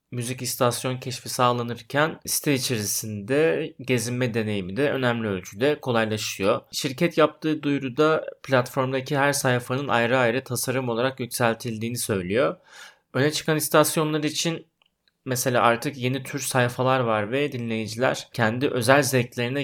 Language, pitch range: Turkish, 115-140 Hz